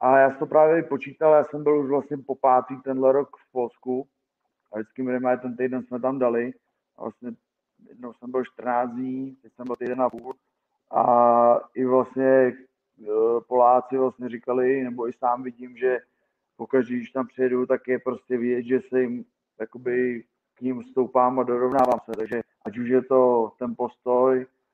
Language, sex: Czech, male